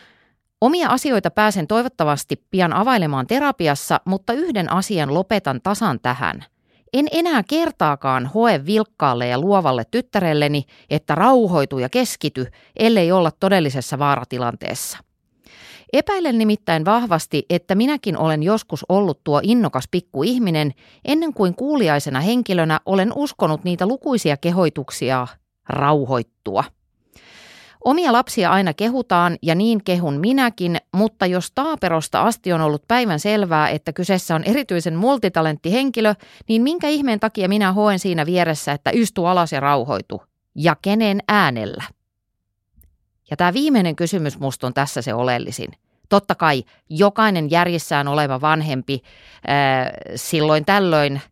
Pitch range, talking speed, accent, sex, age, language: 145-215 Hz, 125 wpm, native, female, 30-49, Finnish